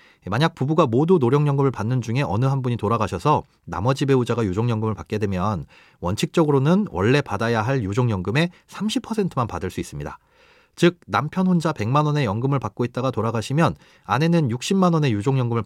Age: 30-49